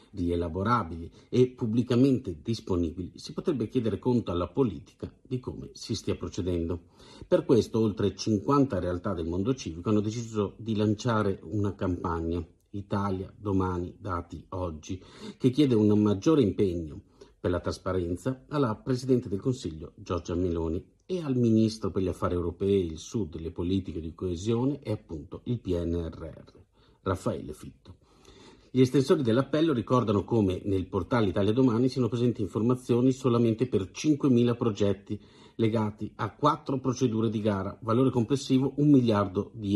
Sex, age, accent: male, 50-69, native